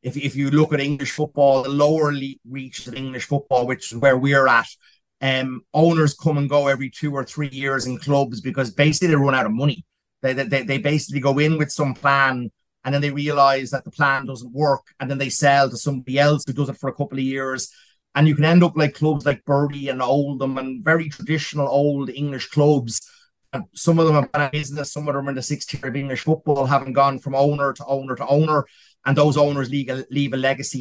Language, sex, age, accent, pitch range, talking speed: English, male, 30-49, Irish, 135-150 Hz, 240 wpm